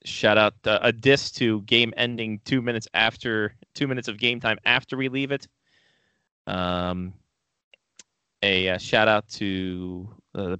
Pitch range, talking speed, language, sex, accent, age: 95-125 Hz, 160 wpm, English, male, American, 20-39